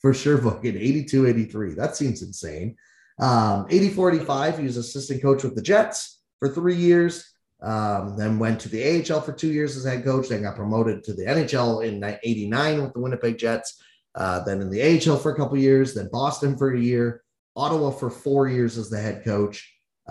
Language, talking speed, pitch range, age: English, 205 wpm, 115-150 Hz, 30-49